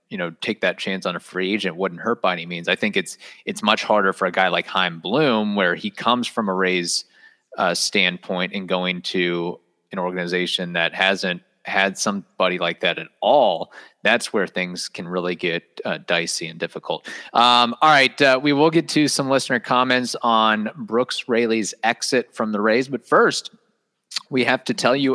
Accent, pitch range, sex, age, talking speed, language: American, 100-140 Hz, male, 30-49, 195 wpm, English